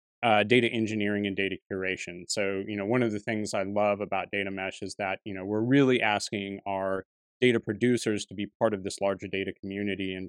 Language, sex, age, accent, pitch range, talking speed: English, male, 30-49, American, 95-110 Hz, 220 wpm